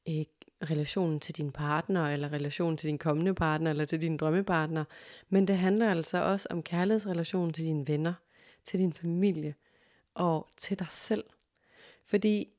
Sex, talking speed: female, 155 wpm